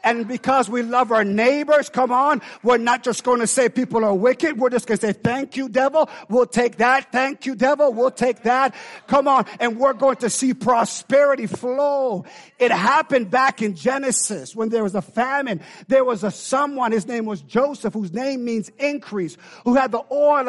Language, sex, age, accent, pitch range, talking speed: English, male, 50-69, American, 205-265 Hz, 200 wpm